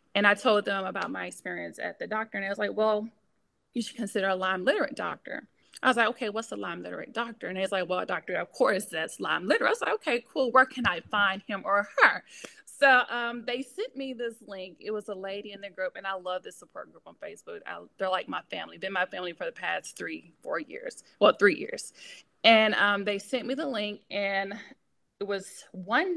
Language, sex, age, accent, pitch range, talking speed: English, female, 20-39, American, 195-255 Hz, 240 wpm